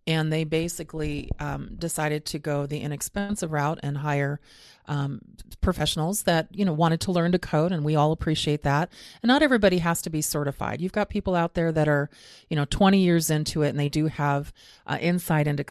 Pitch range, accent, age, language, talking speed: 145-170 Hz, American, 30-49, English, 205 wpm